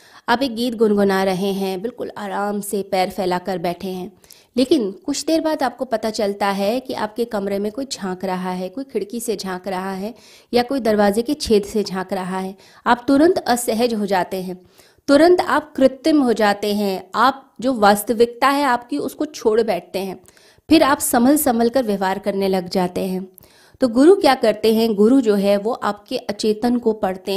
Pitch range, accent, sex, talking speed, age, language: 195-245 Hz, native, female, 195 wpm, 30-49, Hindi